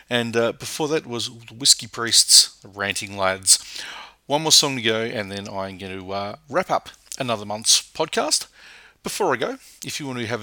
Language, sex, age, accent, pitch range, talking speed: English, male, 40-59, Australian, 110-140 Hz, 195 wpm